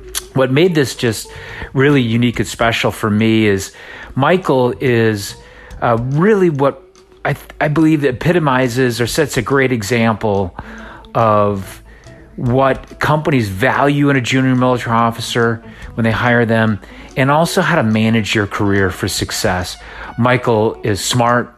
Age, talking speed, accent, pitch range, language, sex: 40-59, 140 wpm, American, 105-130 Hz, English, male